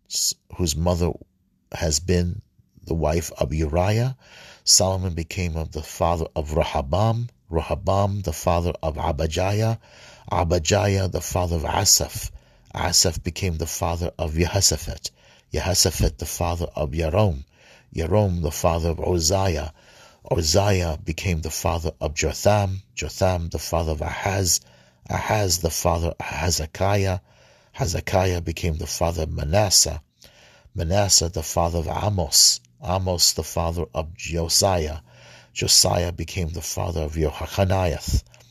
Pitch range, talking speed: 80-100 Hz, 125 wpm